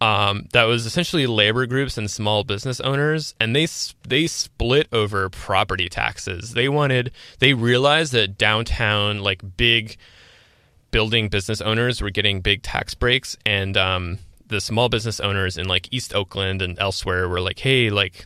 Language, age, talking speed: English, 20-39, 160 wpm